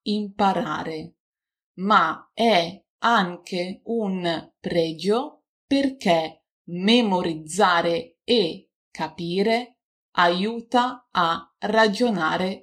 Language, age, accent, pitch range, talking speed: Italian, 30-49, native, 160-225 Hz, 60 wpm